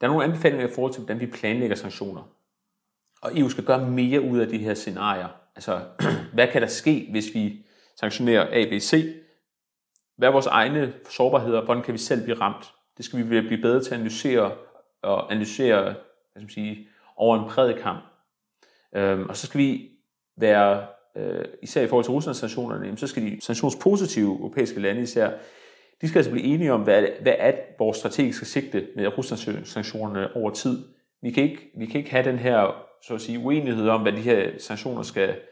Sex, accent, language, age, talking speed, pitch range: male, native, Danish, 30-49, 190 wpm, 110-140 Hz